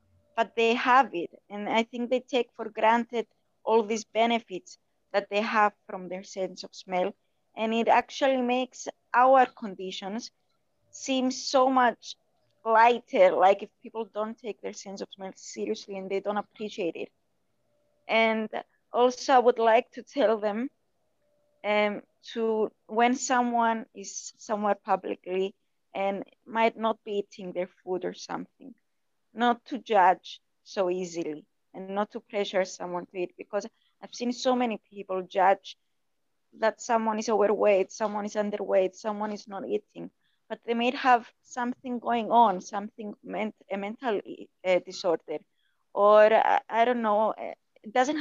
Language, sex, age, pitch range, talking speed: English, female, 20-39, 195-240 Hz, 150 wpm